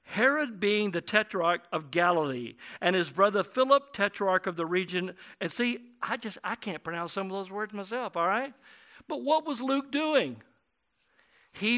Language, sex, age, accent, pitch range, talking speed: English, male, 50-69, American, 170-225 Hz, 175 wpm